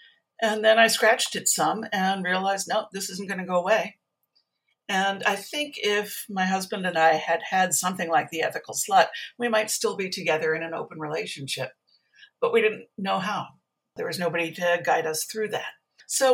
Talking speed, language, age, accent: 195 wpm, English, 60-79, American